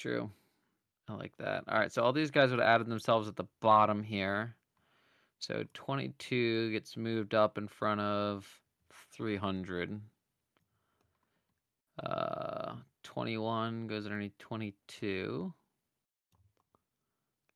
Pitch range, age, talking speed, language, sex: 100-120 Hz, 20-39, 110 wpm, English, male